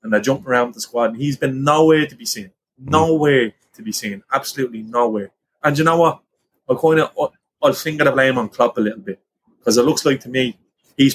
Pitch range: 110-155 Hz